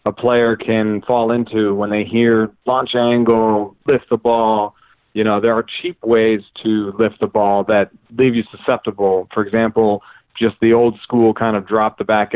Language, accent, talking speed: English, American, 185 wpm